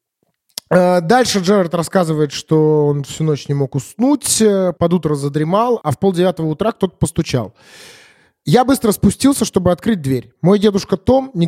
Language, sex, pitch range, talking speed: Russian, male, 140-195 Hz, 150 wpm